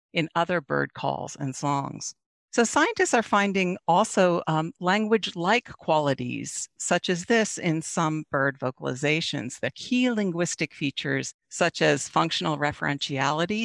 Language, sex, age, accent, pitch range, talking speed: English, female, 50-69, American, 145-200 Hz, 130 wpm